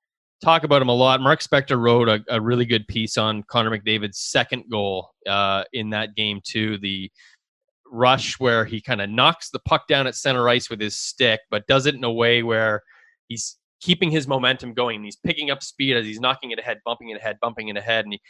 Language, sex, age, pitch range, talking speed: English, male, 20-39, 110-130 Hz, 220 wpm